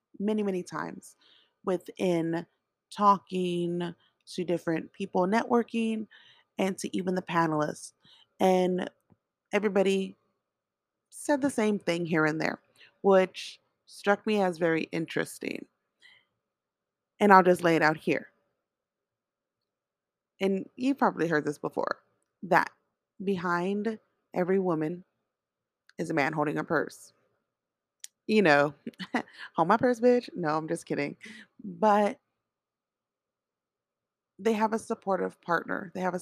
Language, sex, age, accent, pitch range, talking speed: English, female, 30-49, American, 160-205 Hz, 115 wpm